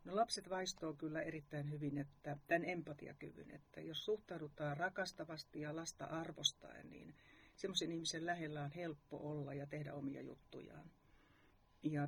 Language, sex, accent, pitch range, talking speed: Finnish, female, native, 160-215 Hz, 140 wpm